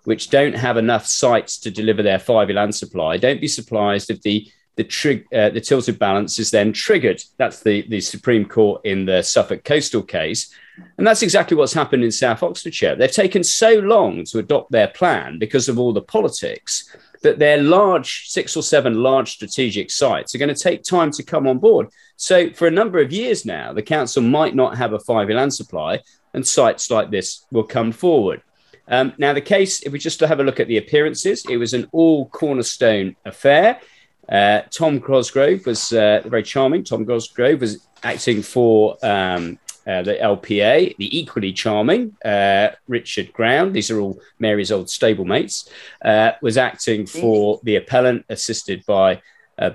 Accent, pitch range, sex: British, 105-145 Hz, male